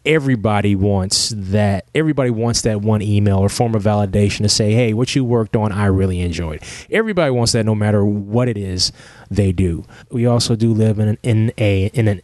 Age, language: 20-39, English